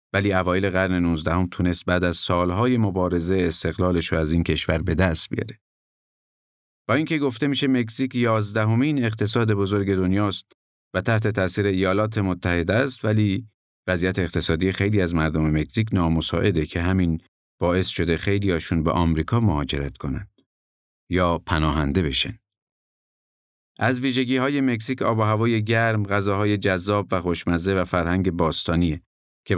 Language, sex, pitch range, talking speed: Persian, male, 85-110 Hz, 140 wpm